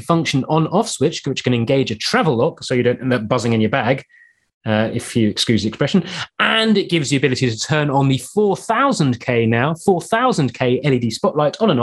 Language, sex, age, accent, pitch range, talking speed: English, male, 30-49, British, 115-165 Hz, 210 wpm